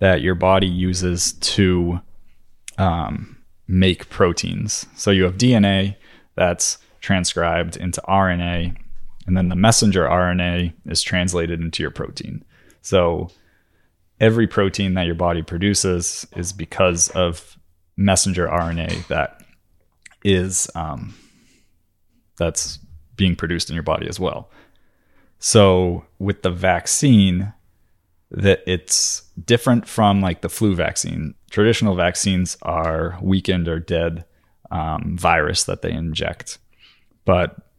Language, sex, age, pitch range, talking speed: English, male, 20-39, 85-100 Hz, 115 wpm